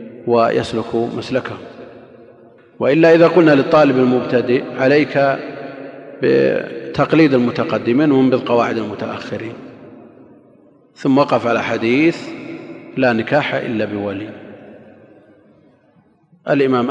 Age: 40-59